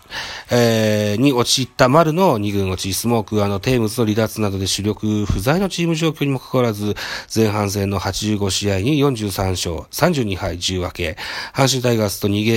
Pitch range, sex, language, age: 100-140 Hz, male, Japanese, 40-59